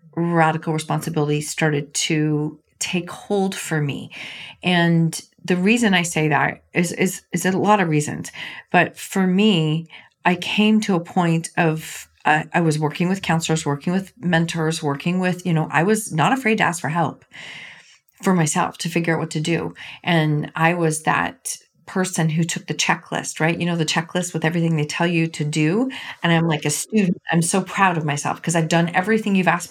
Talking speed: 195 wpm